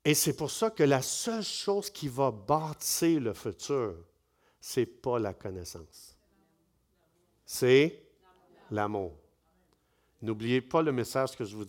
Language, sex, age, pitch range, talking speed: French, male, 60-79, 125-165 Hz, 135 wpm